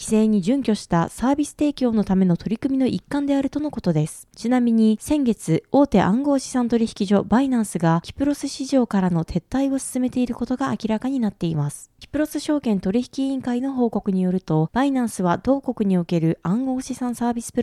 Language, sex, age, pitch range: Japanese, female, 20-39, 185-260 Hz